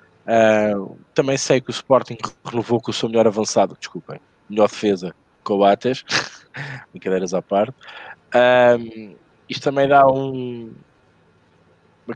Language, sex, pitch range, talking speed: Portuguese, male, 105-125 Hz, 110 wpm